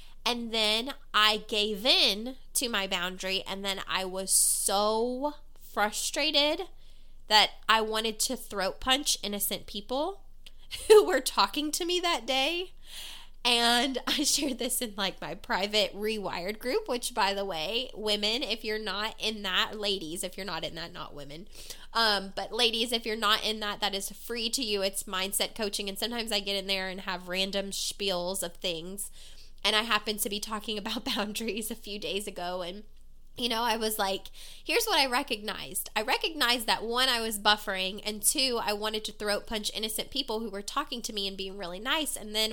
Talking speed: 190 wpm